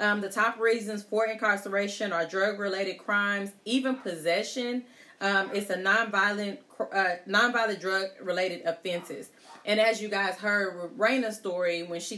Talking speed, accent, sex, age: 150 wpm, American, female, 30-49